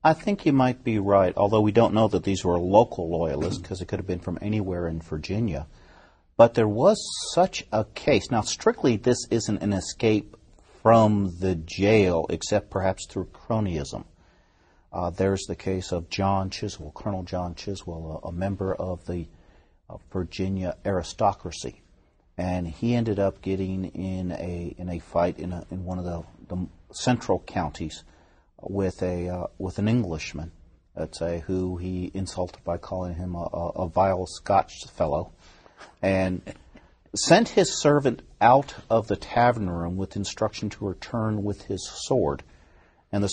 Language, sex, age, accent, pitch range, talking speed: English, male, 50-69, American, 90-105 Hz, 160 wpm